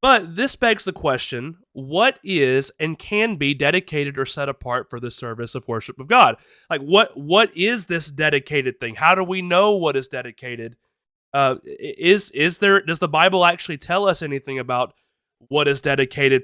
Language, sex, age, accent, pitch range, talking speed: English, male, 30-49, American, 135-180 Hz, 185 wpm